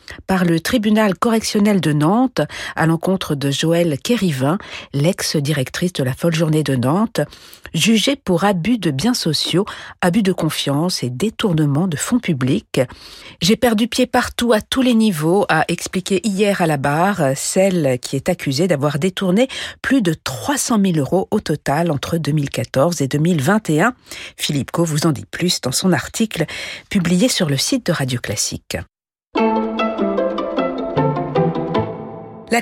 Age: 50-69